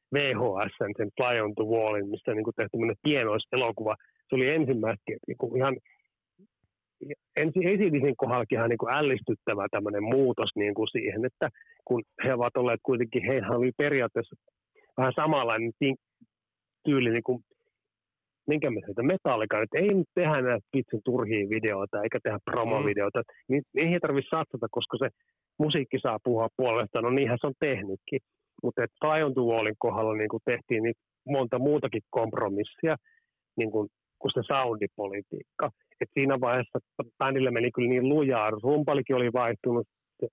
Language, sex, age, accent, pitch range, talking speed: Finnish, male, 30-49, native, 115-150 Hz, 145 wpm